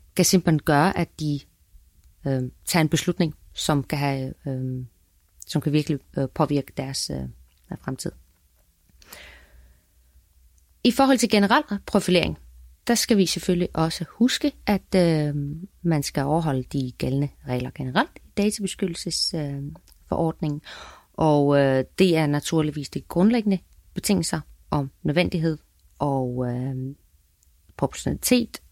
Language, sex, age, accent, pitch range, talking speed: Danish, female, 30-49, native, 130-180 Hz, 120 wpm